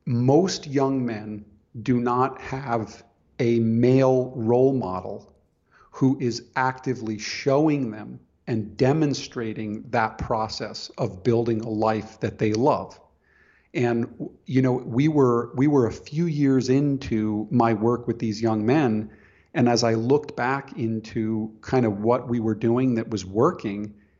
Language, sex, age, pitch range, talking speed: English, male, 40-59, 110-130 Hz, 145 wpm